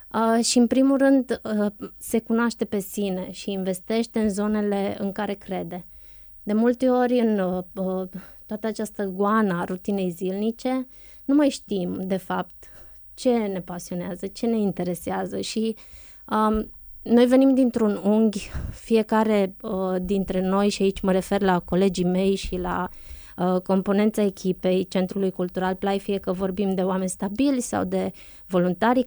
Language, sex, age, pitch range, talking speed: Romanian, female, 20-39, 185-220 Hz, 135 wpm